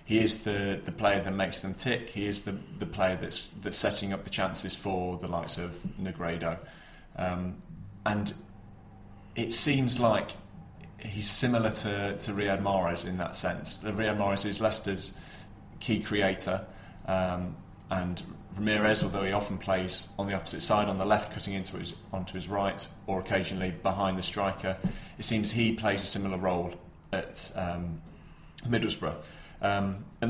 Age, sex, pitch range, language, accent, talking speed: 30-49, male, 95-105 Hz, English, British, 160 wpm